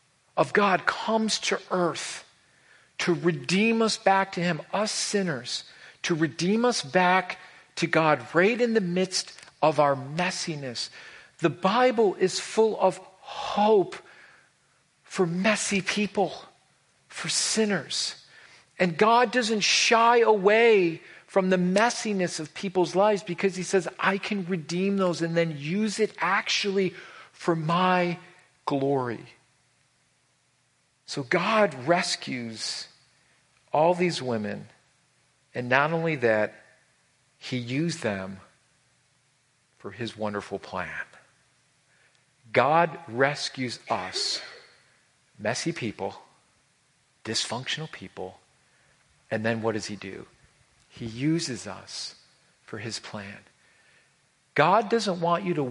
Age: 50-69